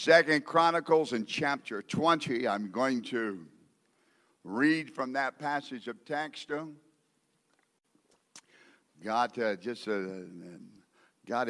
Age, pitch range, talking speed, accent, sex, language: 60-79, 125-165 Hz, 100 wpm, American, male, English